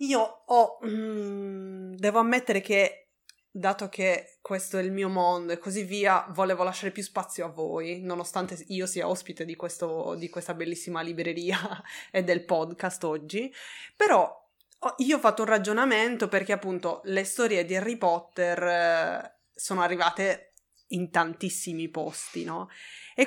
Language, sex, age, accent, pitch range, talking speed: Italian, female, 20-39, native, 175-220 Hz, 145 wpm